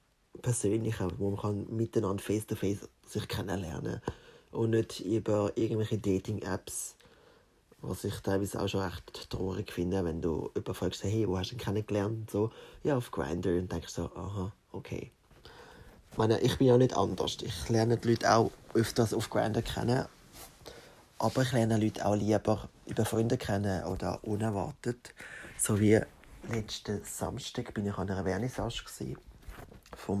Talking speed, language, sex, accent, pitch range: 155 wpm, German, male, German, 95-115 Hz